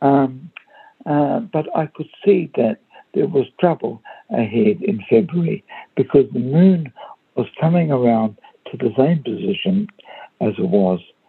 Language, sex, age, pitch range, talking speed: English, male, 60-79, 140-205 Hz, 140 wpm